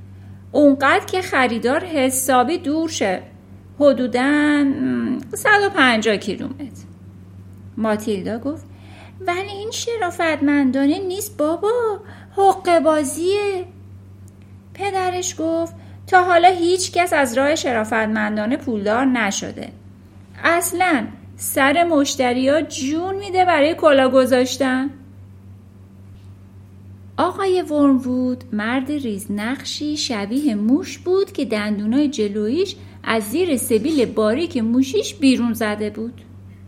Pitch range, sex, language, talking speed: 210-320 Hz, female, Persian, 90 wpm